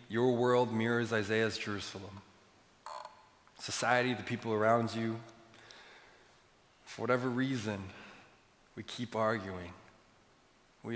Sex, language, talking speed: male, English, 95 wpm